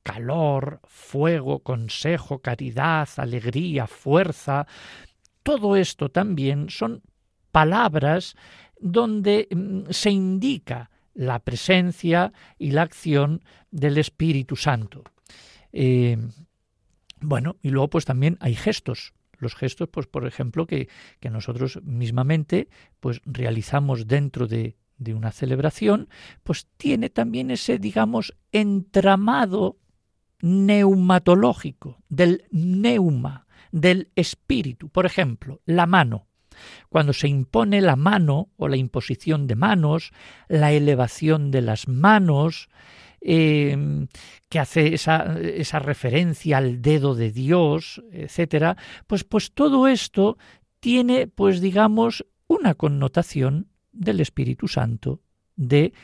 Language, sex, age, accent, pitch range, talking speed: Spanish, male, 50-69, Spanish, 130-180 Hz, 105 wpm